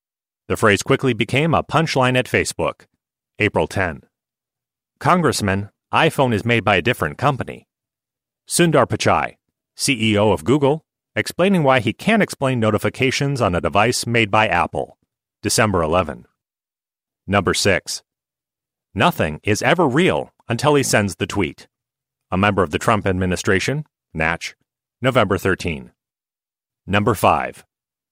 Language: English